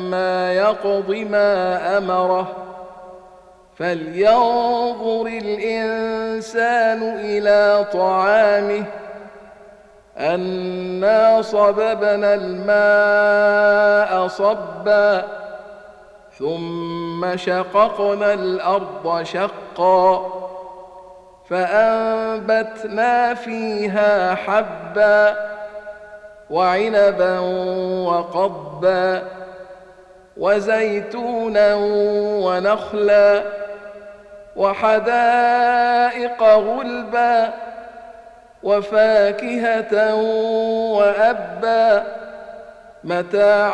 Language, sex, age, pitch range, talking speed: Arabic, male, 50-69, 185-215 Hz, 35 wpm